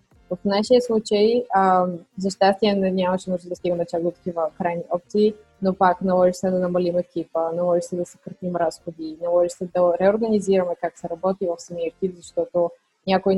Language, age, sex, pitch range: Bulgarian, 20-39, female, 175-195 Hz